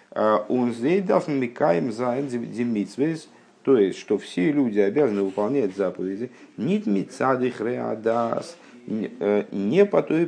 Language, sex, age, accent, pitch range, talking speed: Russian, male, 50-69, native, 90-110 Hz, 90 wpm